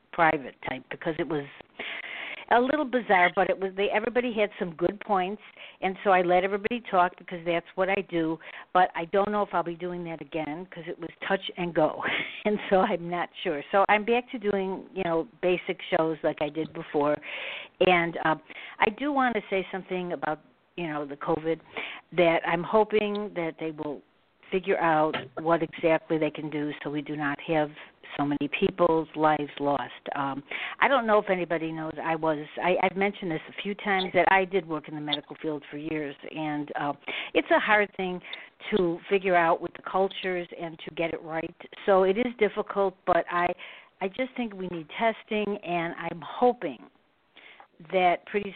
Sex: female